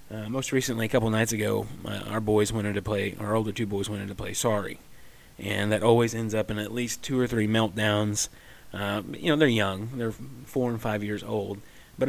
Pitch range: 105-130 Hz